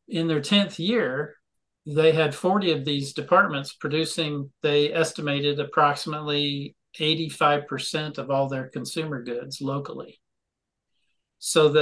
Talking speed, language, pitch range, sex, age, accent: 110 wpm, English, 140-170 Hz, male, 50-69, American